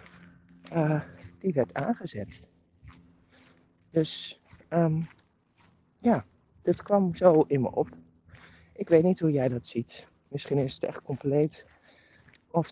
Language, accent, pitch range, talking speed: Dutch, Dutch, 115-145 Hz, 125 wpm